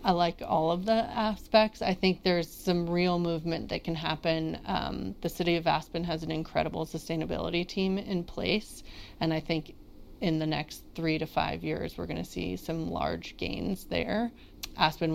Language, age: English, 30-49